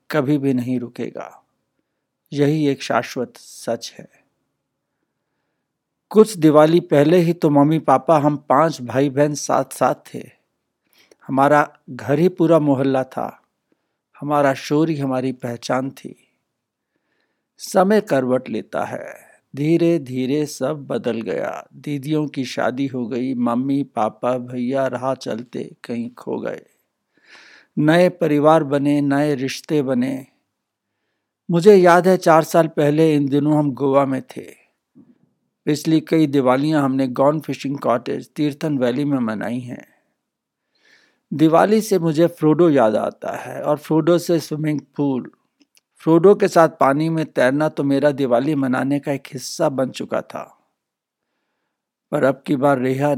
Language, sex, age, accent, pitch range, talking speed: Hindi, male, 60-79, native, 130-160 Hz, 135 wpm